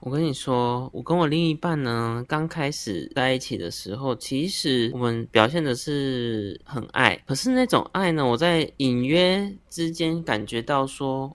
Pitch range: 115-150 Hz